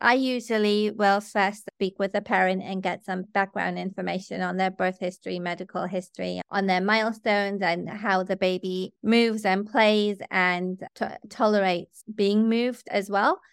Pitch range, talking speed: 185-220 Hz, 155 wpm